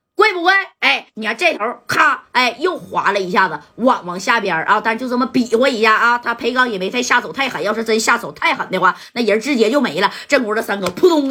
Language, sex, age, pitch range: Chinese, female, 30-49, 210-305 Hz